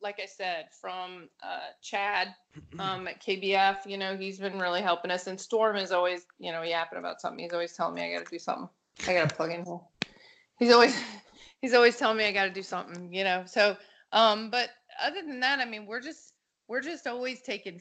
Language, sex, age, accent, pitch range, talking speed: English, female, 30-49, American, 190-225 Hz, 215 wpm